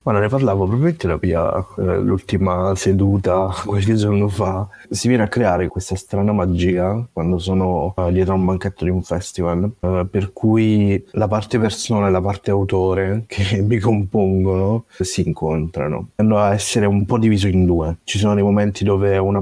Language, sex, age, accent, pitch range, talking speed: Italian, male, 30-49, native, 90-105 Hz, 170 wpm